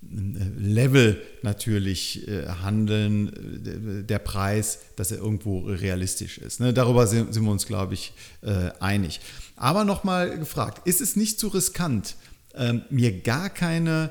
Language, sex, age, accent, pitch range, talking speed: German, male, 40-59, German, 105-140 Hz, 125 wpm